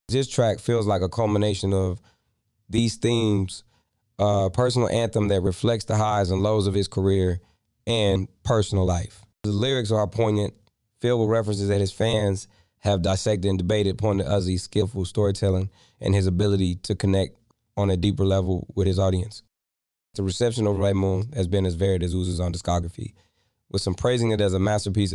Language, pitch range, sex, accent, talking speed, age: English, 95-110 Hz, male, American, 180 wpm, 20-39